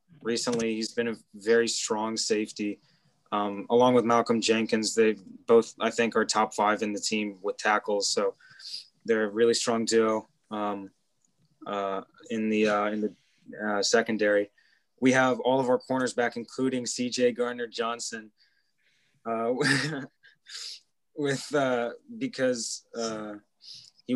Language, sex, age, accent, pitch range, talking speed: English, male, 20-39, American, 110-125 Hz, 140 wpm